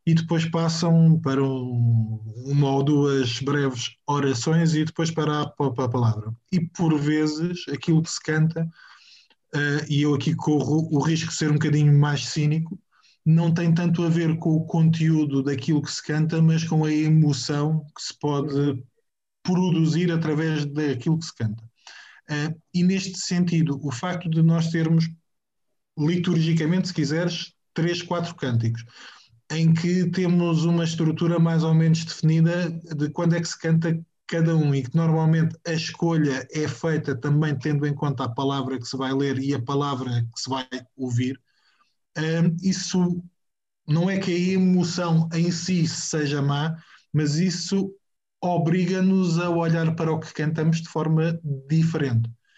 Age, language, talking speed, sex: 20-39, Portuguese, 155 wpm, male